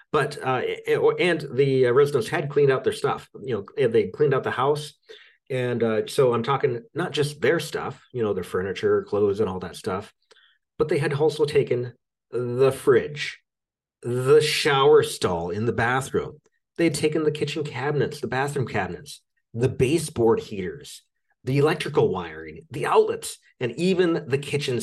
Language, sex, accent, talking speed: English, male, American, 165 wpm